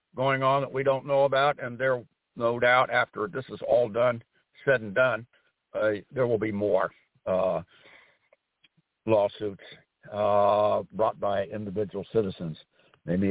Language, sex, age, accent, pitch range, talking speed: English, male, 60-79, American, 120-155 Hz, 145 wpm